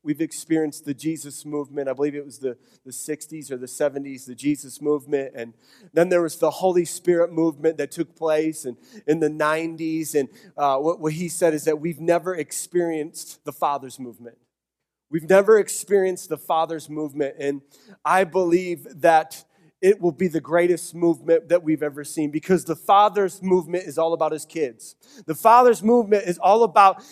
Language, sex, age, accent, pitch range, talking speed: English, male, 30-49, American, 155-220 Hz, 180 wpm